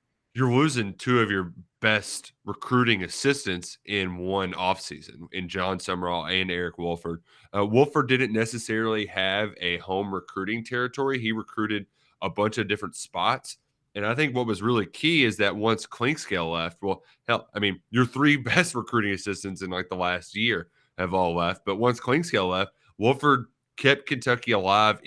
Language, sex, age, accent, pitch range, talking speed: English, male, 30-49, American, 95-125 Hz, 170 wpm